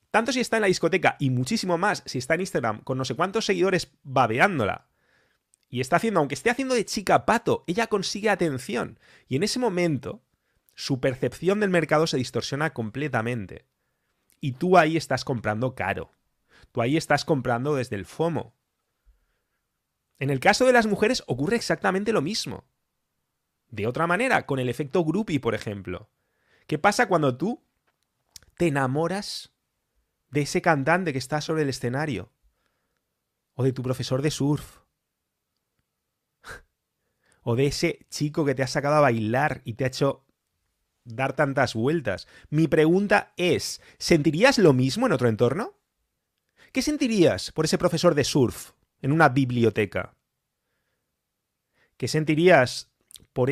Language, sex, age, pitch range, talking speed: English, male, 30-49, 125-175 Hz, 150 wpm